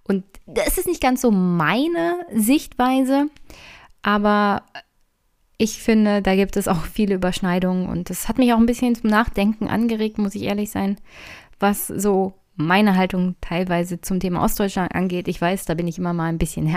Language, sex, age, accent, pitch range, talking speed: German, female, 20-39, German, 180-220 Hz, 175 wpm